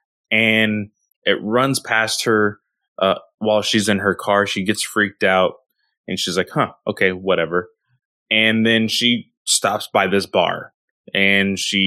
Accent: American